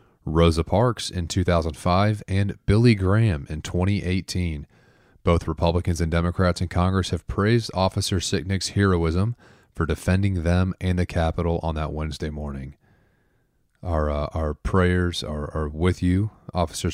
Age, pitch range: 30-49, 85-105 Hz